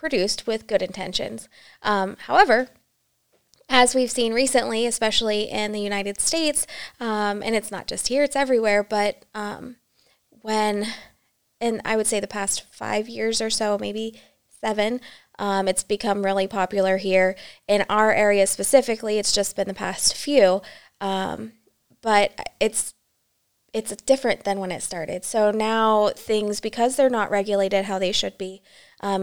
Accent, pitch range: American, 190-220 Hz